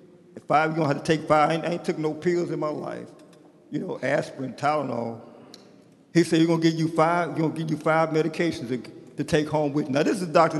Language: English